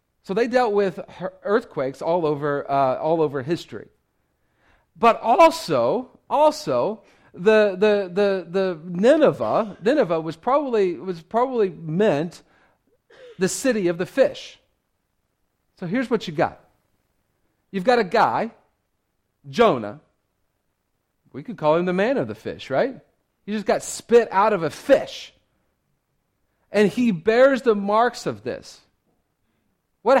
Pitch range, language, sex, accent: 145-215 Hz, English, male, American